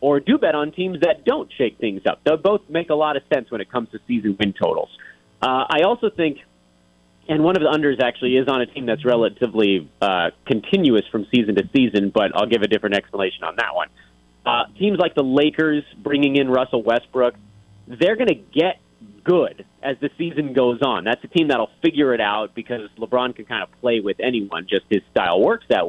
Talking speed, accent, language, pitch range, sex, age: 220 wpm, American, English, 110-160 Hz, male, 30-49